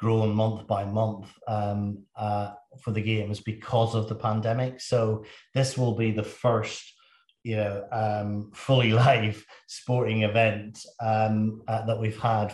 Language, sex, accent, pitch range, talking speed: English, male, British, 110-130 Hz, 150 wpm